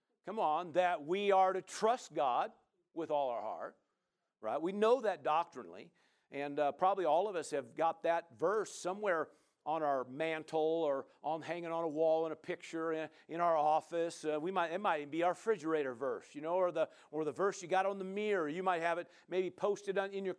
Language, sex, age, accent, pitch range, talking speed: English, male, 50-69, American, 145-190 Hz, 220 wpm